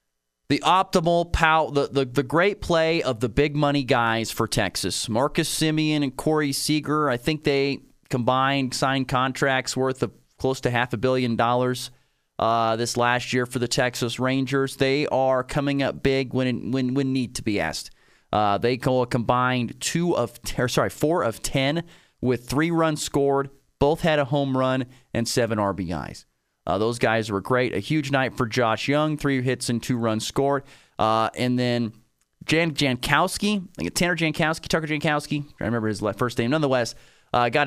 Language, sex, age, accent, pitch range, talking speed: English, male, 30-49, American, 120-145 Hz, 185 wpm